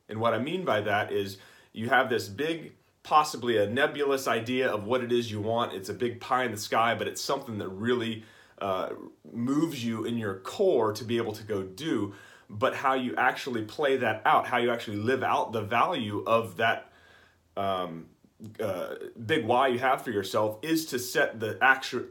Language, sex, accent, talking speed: English, male, American, 200 wpm